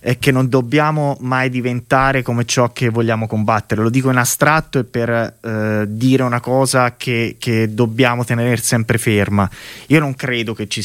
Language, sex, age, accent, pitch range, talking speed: Italian, male, 20-39, native, 115-140 Hz, 175 wpm